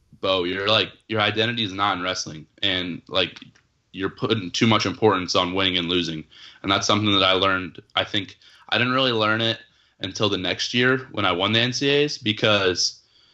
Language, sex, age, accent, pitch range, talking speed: English, male, 20-39, American, 100-115 Hz, 195 wpm